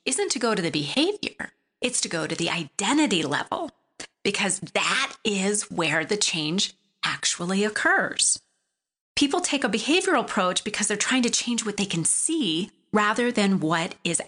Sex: female